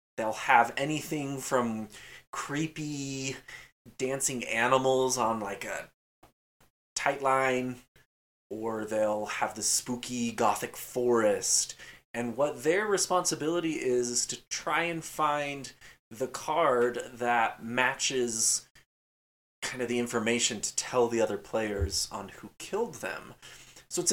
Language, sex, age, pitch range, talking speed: English, male, 20-39, 115-145 Hz, 120 wpm